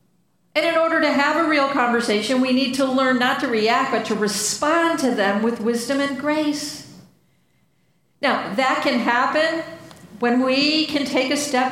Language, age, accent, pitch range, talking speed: English, 50-69, American, 205-285 Hz, 175 wpm